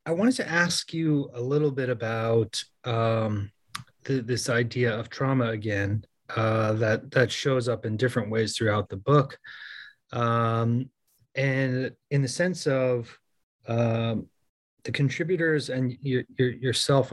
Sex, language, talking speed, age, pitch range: male, English, 130 wpm, 30-49, 115-135 Hz